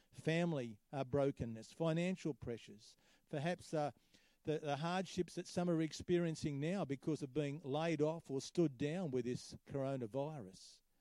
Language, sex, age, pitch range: English, male, 50-69, 135-170 Hz